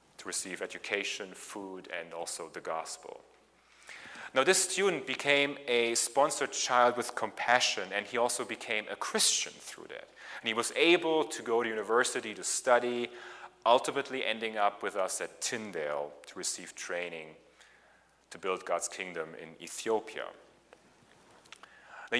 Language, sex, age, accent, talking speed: English, male, 30-49, German, 140 wpm